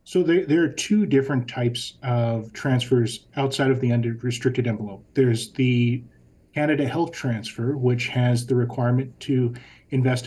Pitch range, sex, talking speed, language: 120-135 Hz, male, 150 wpm, English